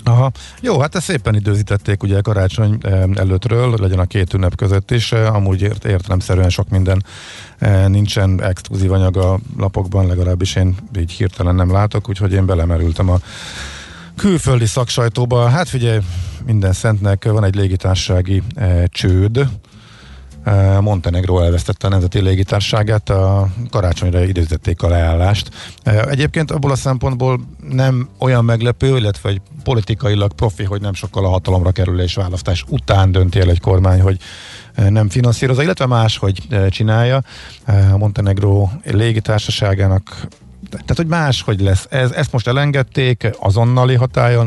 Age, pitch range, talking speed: 50-69, 95-120 Hz, 130 wpm